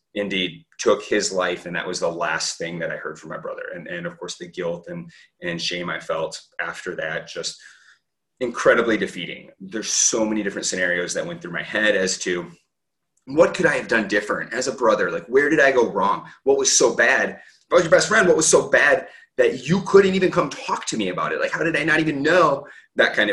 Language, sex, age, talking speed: English, male, 30-49, 235 wpm